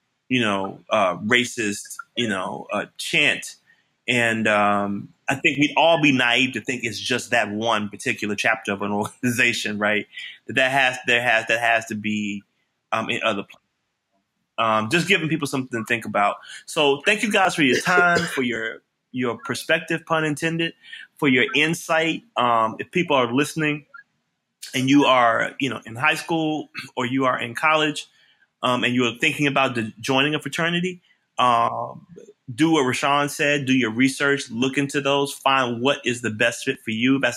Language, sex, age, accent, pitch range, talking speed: English, male, 20-39, American, 115-145 Hz, 180 wpm